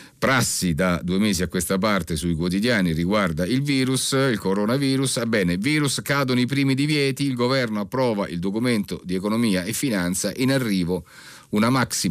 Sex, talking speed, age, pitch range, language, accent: male, 170 wpm, 50-69, 85-120 Hz, Italian, native